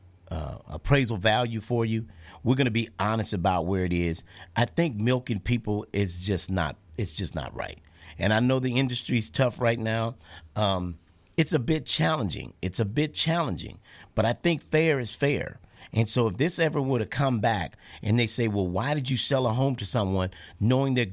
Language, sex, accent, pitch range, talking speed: English, male, American, 95-135 Hz, 200 wpm